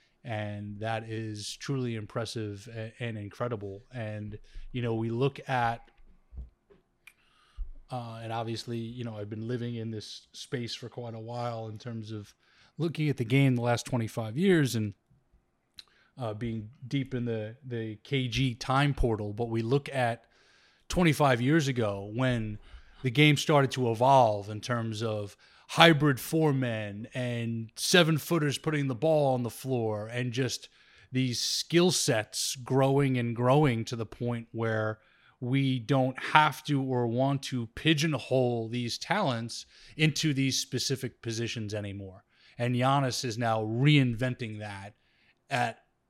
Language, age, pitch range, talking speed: English, 20-39, 115-140 Hz, 145 wpm